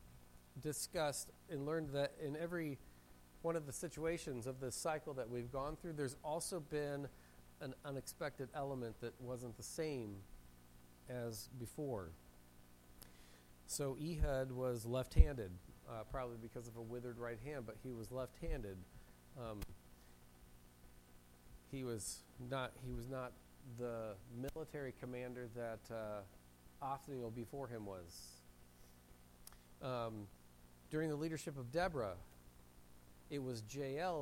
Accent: American